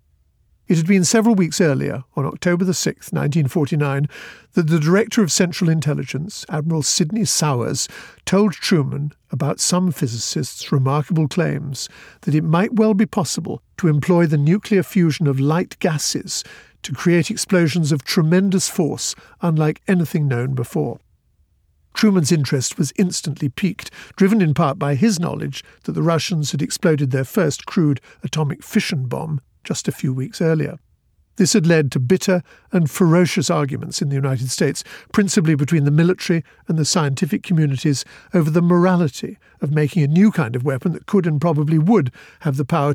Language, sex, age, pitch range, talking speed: English, male, 50-69, 145-180 Hz, 160 wpm